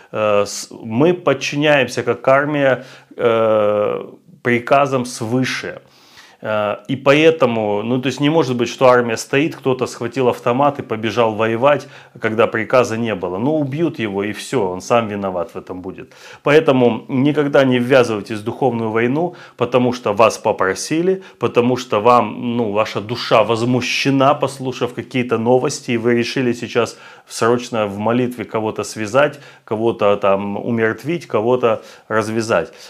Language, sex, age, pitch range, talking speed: Russian, male, 30-49, 115-135 Hz, 135 wpm